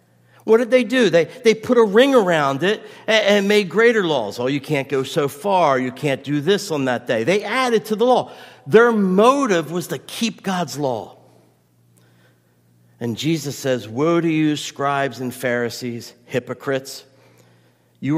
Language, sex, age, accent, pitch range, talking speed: English, male, 50-69, American, 110-165 Hz, 170 wpm